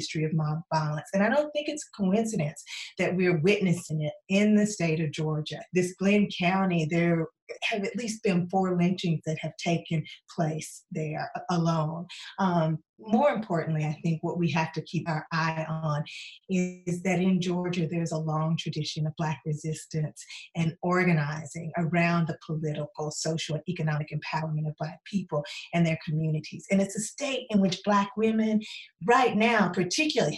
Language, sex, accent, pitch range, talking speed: English, female, American, 160-200 Hz, 170 wpm